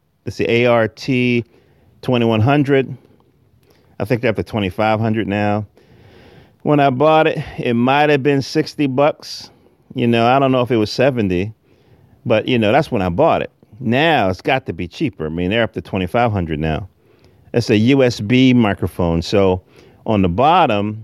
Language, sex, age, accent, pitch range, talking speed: English, male, 40-59, American, 105-130 Hz, 170 wpm